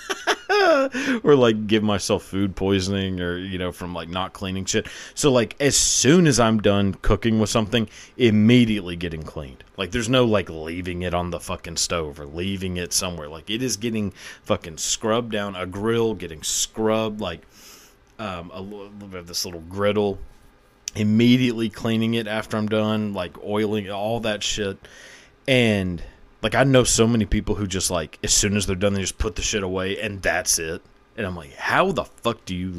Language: English